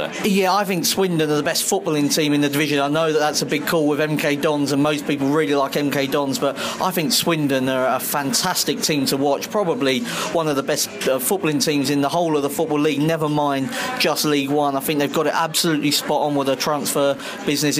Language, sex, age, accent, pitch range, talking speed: English, male, 40-59, British, 145-170 Hz, 240 wpm